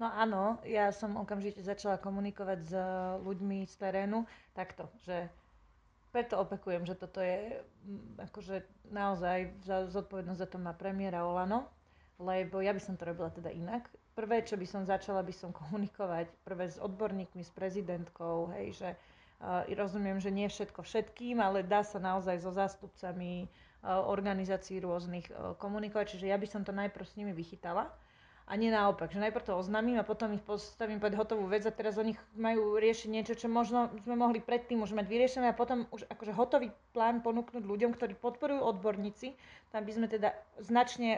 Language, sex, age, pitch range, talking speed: Slovak, female, 30-49, 190-220 Hz, 175 wpm